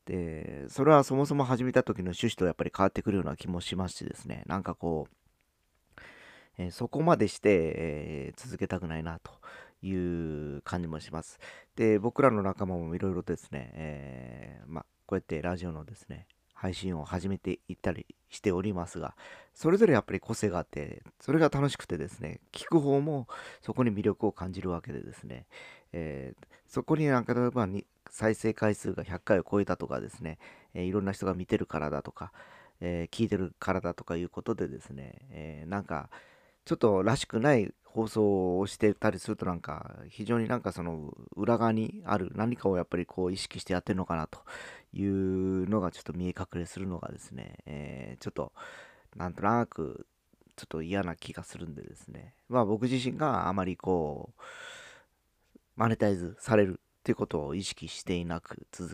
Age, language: 40-59, Japanese